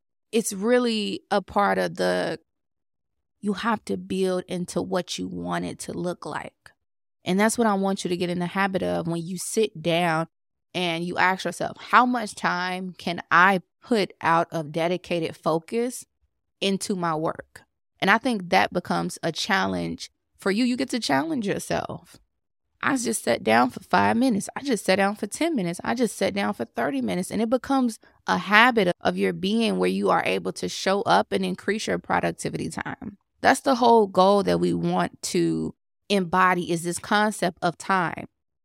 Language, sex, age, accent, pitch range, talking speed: English, female, 20-39, American, 160-205 Hz, 185 wpm